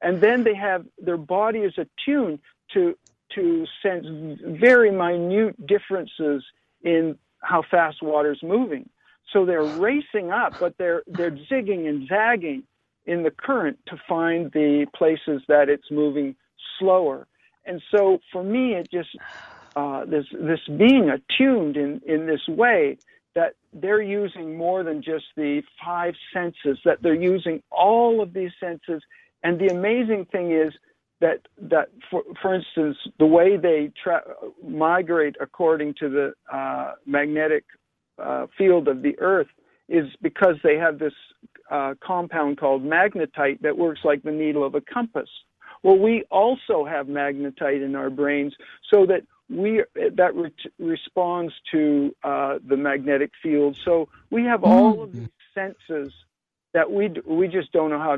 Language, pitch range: English, 150-200 Hz